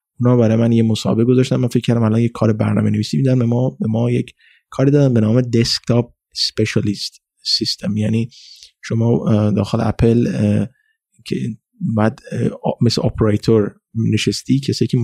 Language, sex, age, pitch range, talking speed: Persian, male, 30-49, 110-130 Hz, 140 wpm